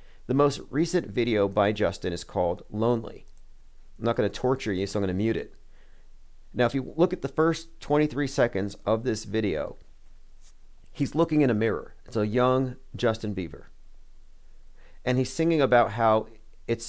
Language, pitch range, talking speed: English, 85-125 Hz, 165 wpm